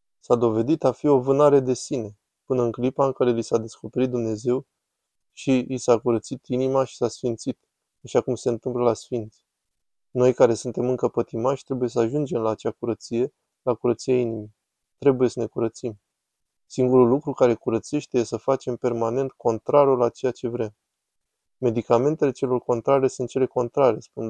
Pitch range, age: 115-135 Hz, 20-39